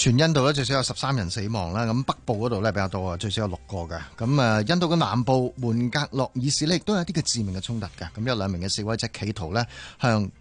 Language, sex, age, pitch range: Chinese, male, 30-49, 105-150 Hz